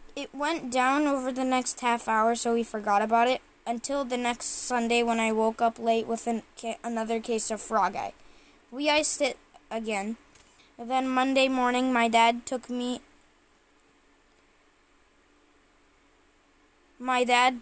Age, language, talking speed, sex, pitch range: 10-29, English, 140 wpm, female, 230-260 Hz